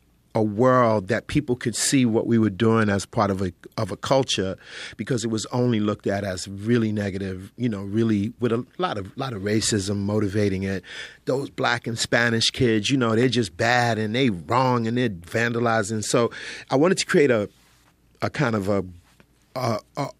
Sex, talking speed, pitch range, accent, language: male, 200 wpm, 100-125 Hz, American, English